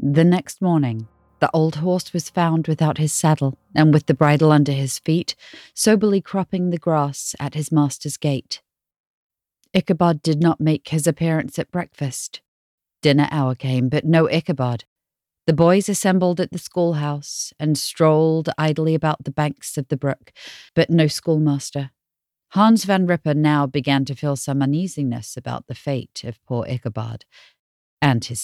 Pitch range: 140-175 Hz